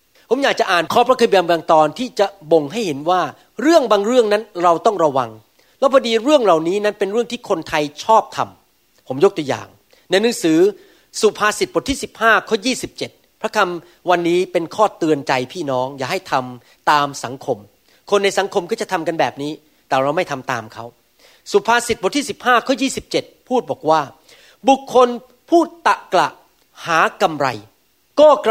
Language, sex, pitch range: Thai, male, 165-235 Hz